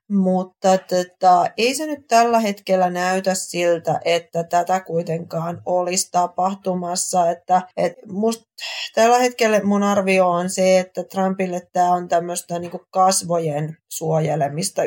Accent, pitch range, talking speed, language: native, 165-185 Hz, 105 wpm, Finnish